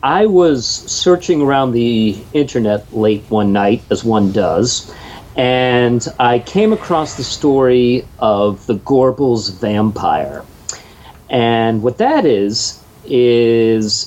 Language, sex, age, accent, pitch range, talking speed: English, male, 50-69, American, 110-150 Hz, 115 wpm